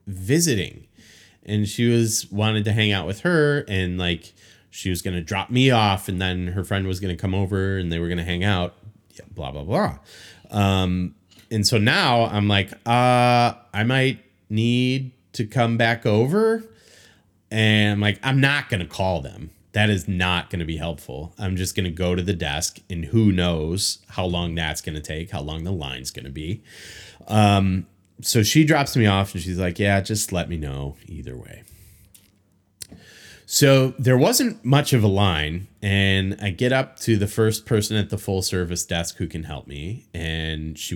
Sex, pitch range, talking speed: male, 90-110 Hz, 185 wpm